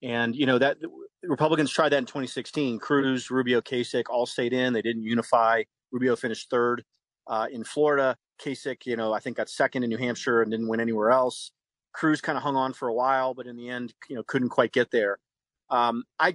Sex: male